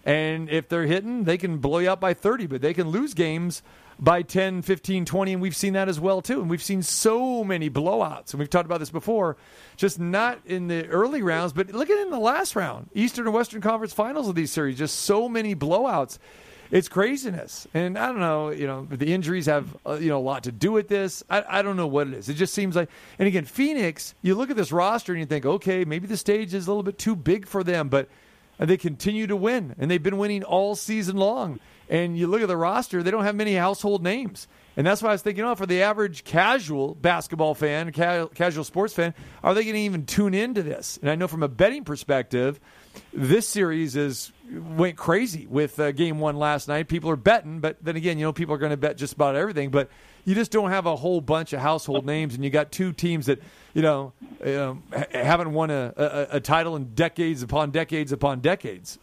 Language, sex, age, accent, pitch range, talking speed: English, male, 40-59, American, 150-195 Hz, 235 wpm